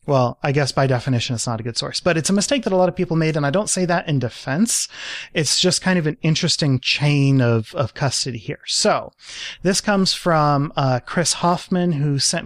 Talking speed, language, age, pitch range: 225 wpm, English, 30-49, 130-165 Hz